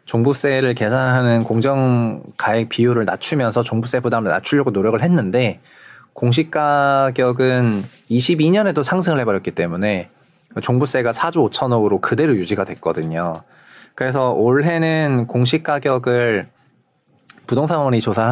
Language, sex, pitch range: Korean, male, 115-145 Hz